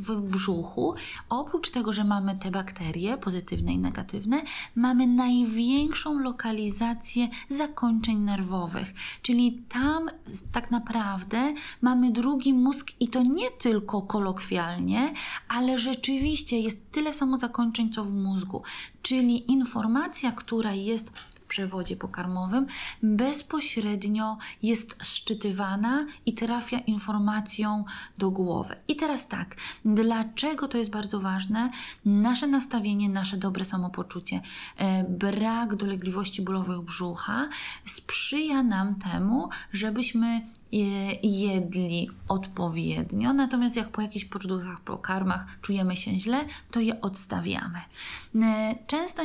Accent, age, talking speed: native, 20-39, 105 wpm